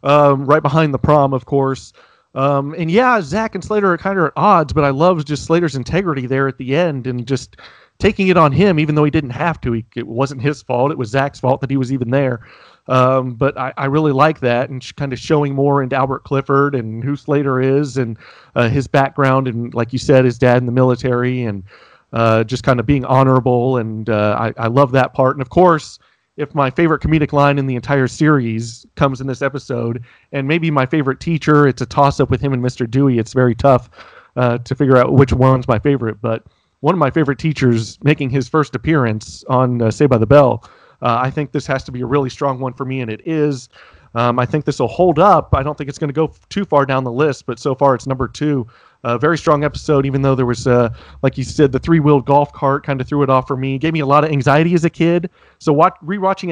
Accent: American